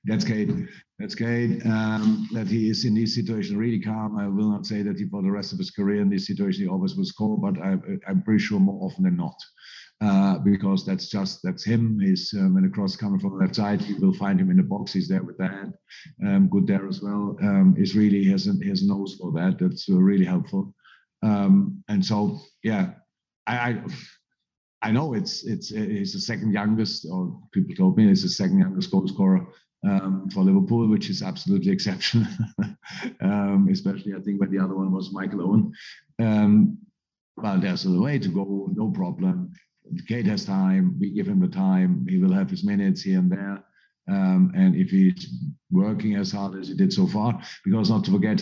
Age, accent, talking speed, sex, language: 50-69, German, 210 wpm, male, English